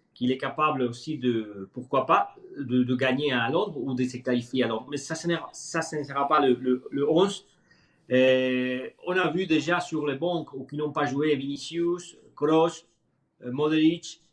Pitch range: 130-160 Hz